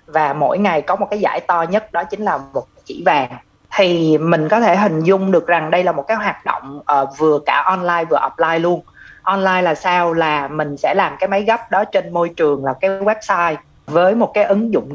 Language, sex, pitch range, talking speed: Vietnamese, female, 160-210 Hz, 230 wpm